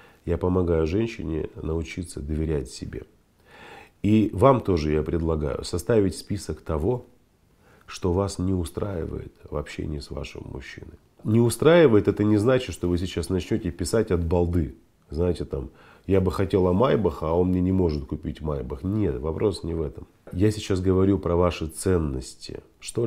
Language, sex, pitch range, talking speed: Russian, male, 80-105 Hz, 160 wpm